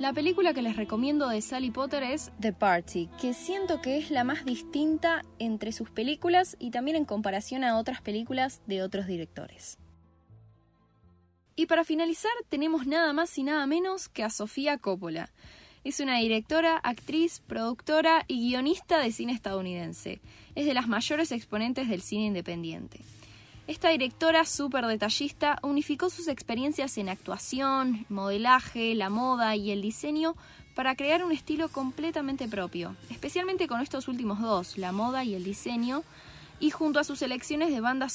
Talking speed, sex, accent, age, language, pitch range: 155 wpm, female, Argentinian, 10-29, Spanish, 205-295 Hz